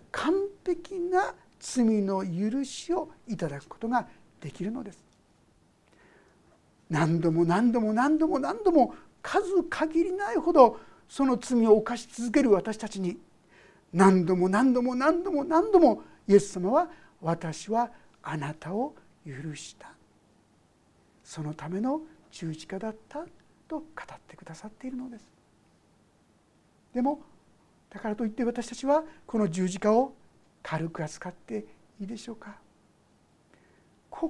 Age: 60-79